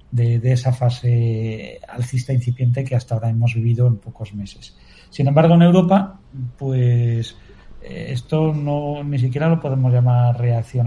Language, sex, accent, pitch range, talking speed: Spanish, male, Spanish, 120-145 Hz, 155 wpm